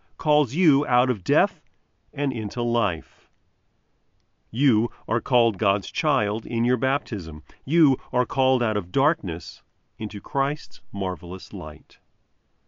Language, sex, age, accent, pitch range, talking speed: English, male, 40-59, American, 95-140 Hz, 125 wpm